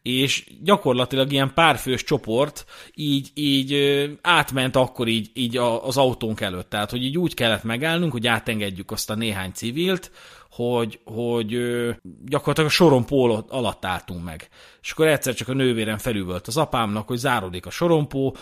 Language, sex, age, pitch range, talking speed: Hungarian, male, 30-49, 105-140 Hz, 155 wpm